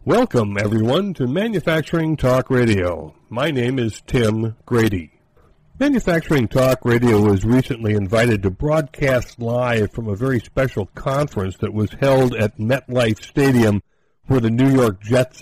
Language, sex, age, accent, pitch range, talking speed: English, male, 60-79, American, 110-140 Hz, 140 wpm